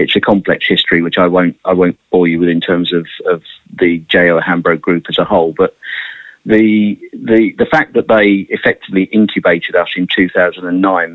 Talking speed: 190 wpm